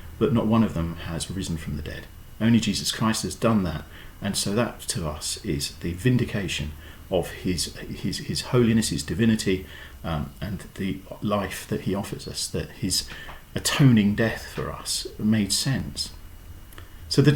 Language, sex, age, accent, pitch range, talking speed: English, male, 40-59, British, 85-125 Hz, 170 wpm